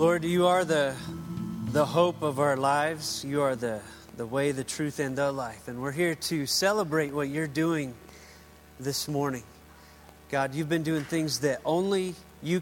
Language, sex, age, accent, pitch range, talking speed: English, male, 30-49, American, 125-155 Hz, 175 wpm